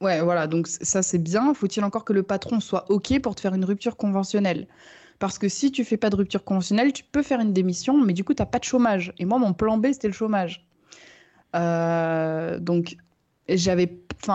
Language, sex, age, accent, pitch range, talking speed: French, female, 20-39, French, 175-210 Hz, 215 wpm